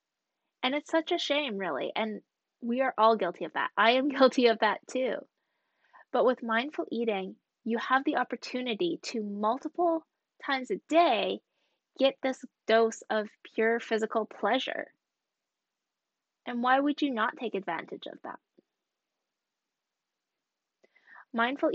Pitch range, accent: 220-280 Hz, American